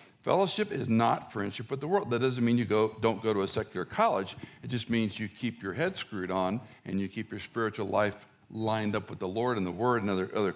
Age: 60-79